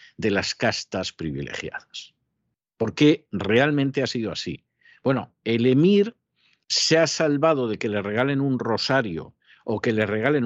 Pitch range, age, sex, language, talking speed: 110-150 Hz, 50-69, male, Spanish, 150 wpm